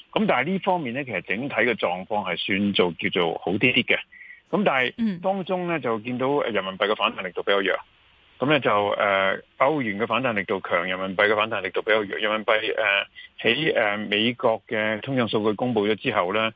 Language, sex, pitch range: Chinese, male, 105-150 Hz